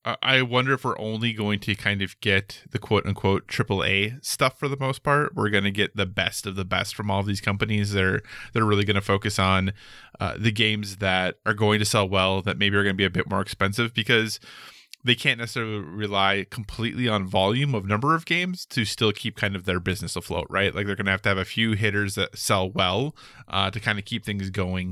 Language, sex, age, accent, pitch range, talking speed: English, male, 20-39, American, 100-120 Hz, 240 wpm